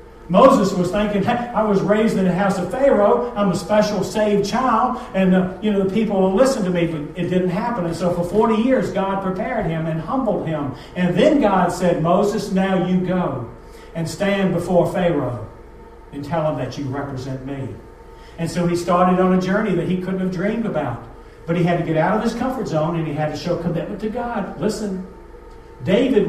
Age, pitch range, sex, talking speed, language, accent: 40-59, 180-235 Hz, male, 210 wpm, English, American